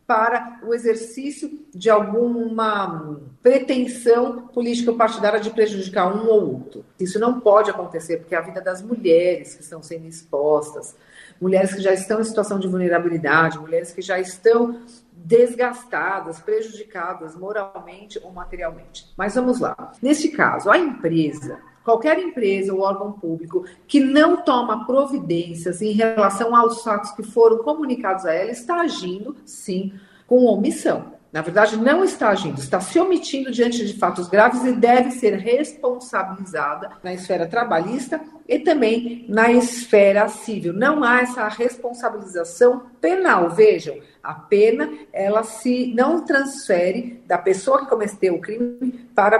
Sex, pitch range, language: female, 185-250 Hz, Portuguese